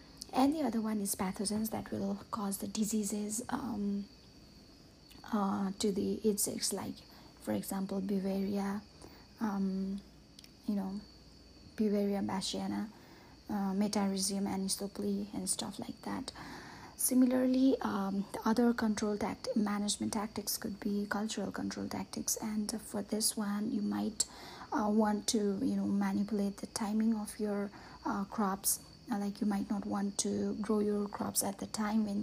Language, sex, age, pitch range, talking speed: English, female, 30-49, 200-225 Hz, 145 wpm